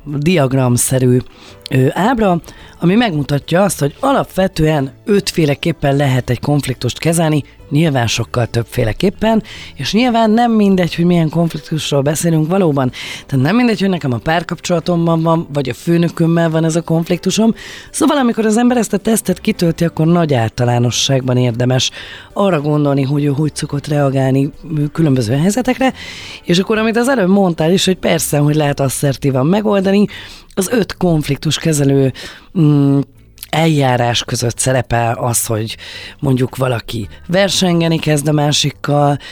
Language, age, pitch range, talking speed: Hungarian, 30-49, 135-175 Hz, 135 wpm